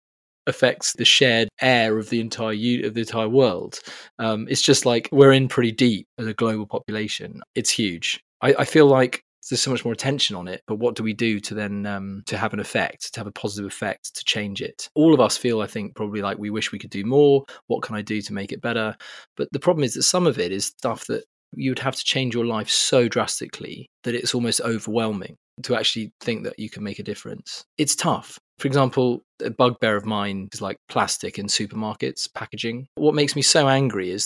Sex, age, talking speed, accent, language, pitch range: male, 20-39, 230 wpm, British, English, 110-135 Hz